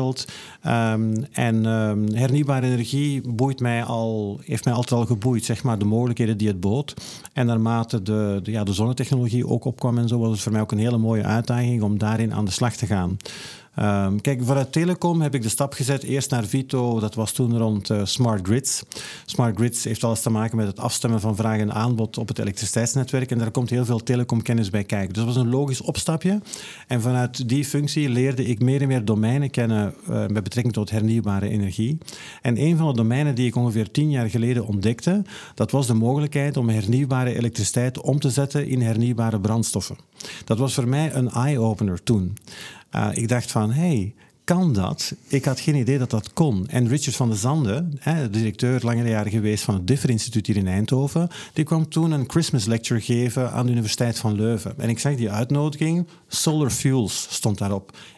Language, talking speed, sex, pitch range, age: Dutch, 195 wpm, male, 110-135 Hz, 50-69